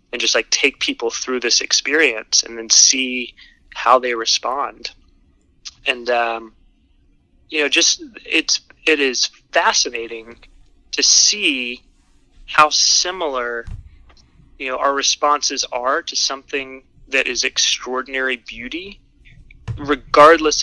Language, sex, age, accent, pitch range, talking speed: English, male, 20-39, American, 115-135 Hz, 115 wpm